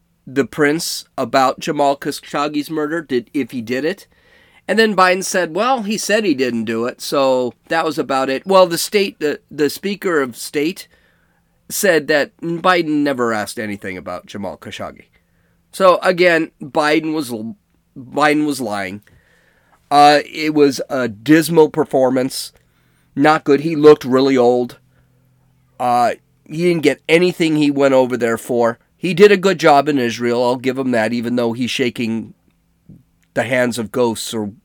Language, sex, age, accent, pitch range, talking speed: English, male, 40-59, American, 120-170 Hz, 160 wpm